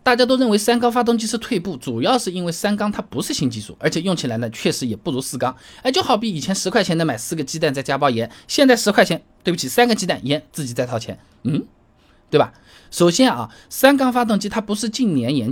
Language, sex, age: Chinese, male, 20-39